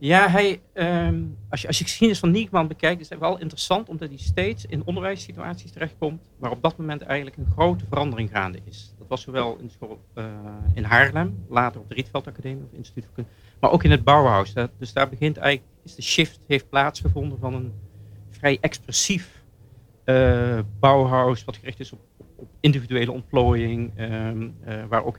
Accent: Dutch